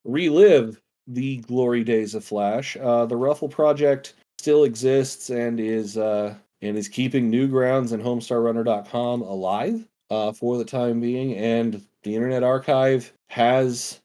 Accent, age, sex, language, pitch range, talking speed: American, 40-59, male, English, 115-150 Hz, 135 wpm